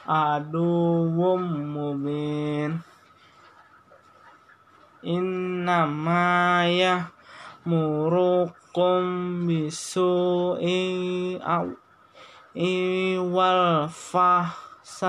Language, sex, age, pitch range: Indonesian, male, 20-39, 160-180 Hz